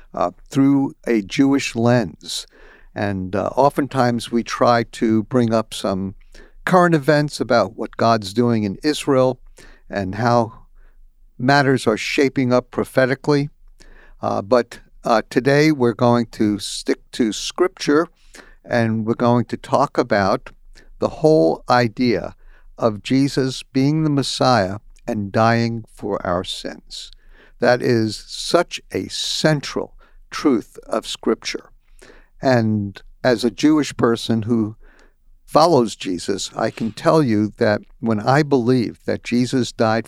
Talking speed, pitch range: 125 wpm, 110-135 Hz